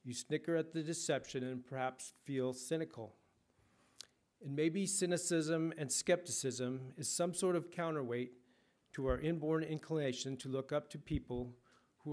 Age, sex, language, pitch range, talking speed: 50-69, male, English, 130-155 Hz, 145 wpm